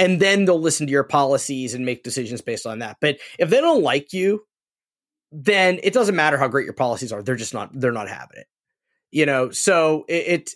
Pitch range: 140-175 Hz